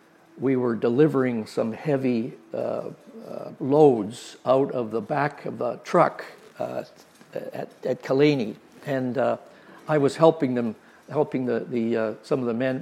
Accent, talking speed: American, 155 wpm